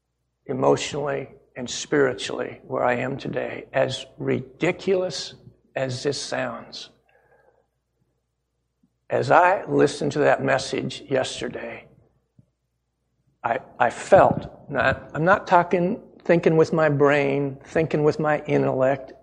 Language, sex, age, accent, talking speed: English, male, 60-79, American, 105 wpm